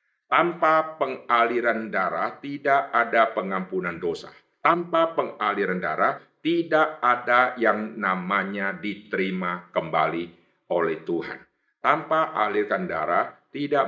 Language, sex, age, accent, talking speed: Indonesian, male, 50-69, native, 95 wpm